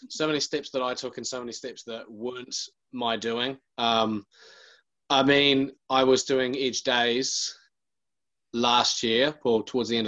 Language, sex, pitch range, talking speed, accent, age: English, male, 100-120 Hz, 165 wpm, Australian, 20-39